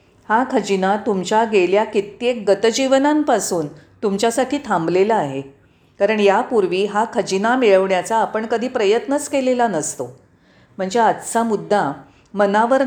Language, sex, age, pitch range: Marathi, female, 40-59, 185-240 Hz